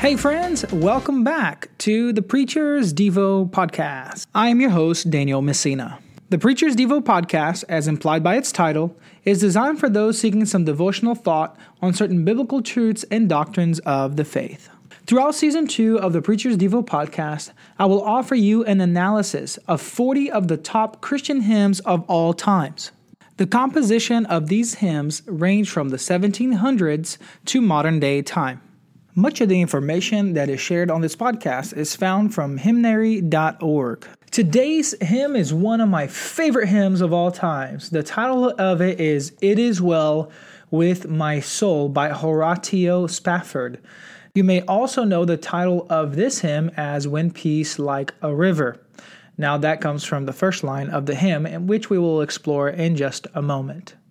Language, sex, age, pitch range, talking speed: English, male, 20-39, 155-220 Hz, 165 wpm